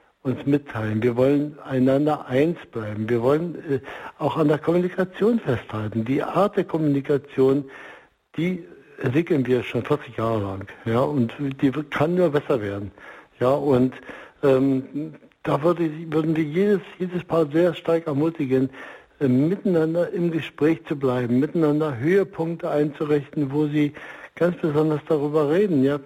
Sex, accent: male, German